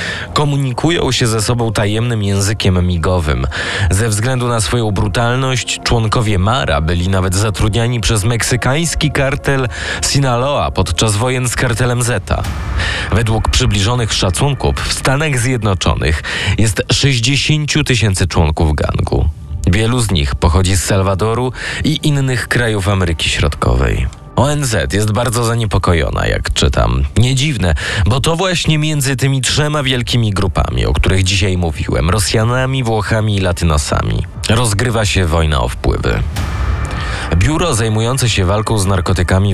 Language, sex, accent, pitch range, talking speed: Polish, male, native, 90-120 Hz, 125 wpm